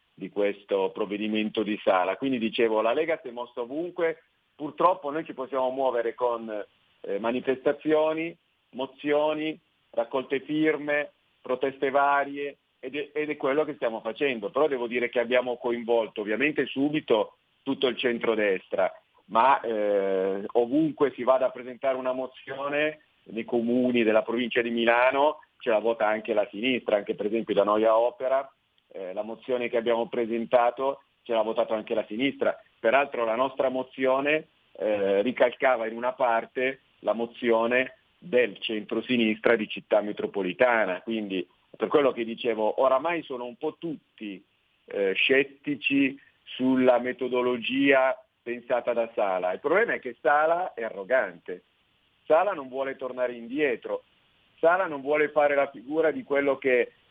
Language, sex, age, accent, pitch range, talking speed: Italian, male, 40-59, native, 115-140 Hz, 145 wpm